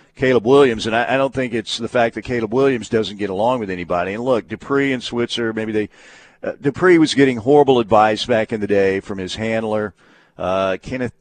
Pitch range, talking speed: 110-140 Hz, 215 wpm